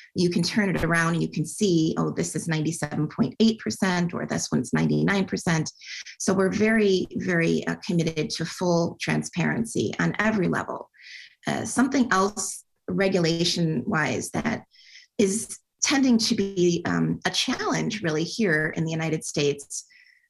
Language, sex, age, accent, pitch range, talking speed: English, female, 30-49, American, 165-210 Hz, 140 wpm